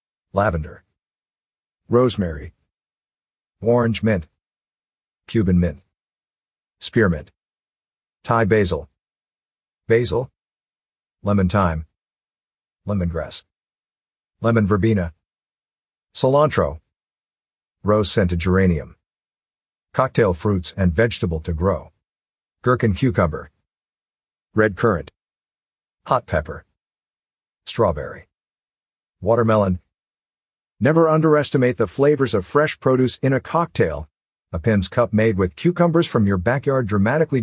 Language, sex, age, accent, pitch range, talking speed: English, male, 50-69, American, 90-120 Hz, 85 wpm